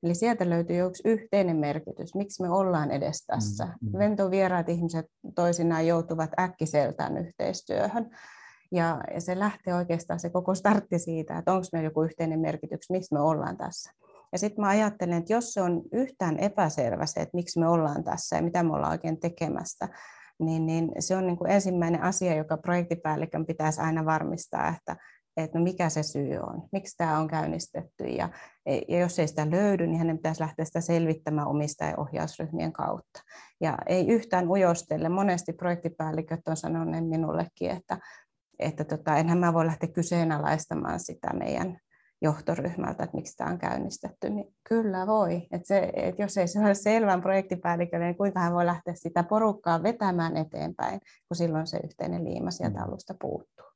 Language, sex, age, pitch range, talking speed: Finnish, female, 30-49, 160-185 Hz, 165 wpm